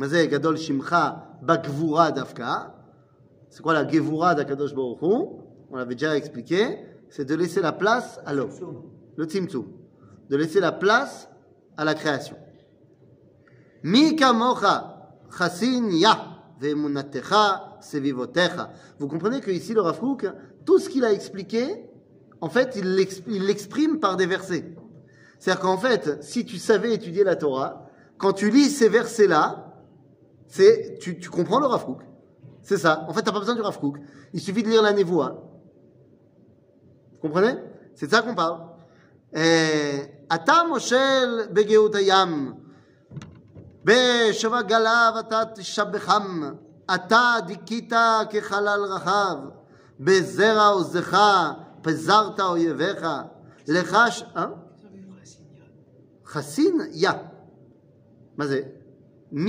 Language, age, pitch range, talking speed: French, 30-49, 155-220 Hz, 90 wpm